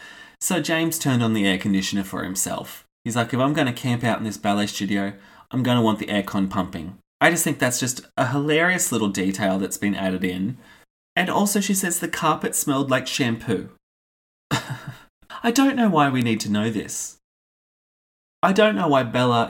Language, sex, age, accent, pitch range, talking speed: English, male, 20-39, Australian, 105-150 Hz, 195 wpm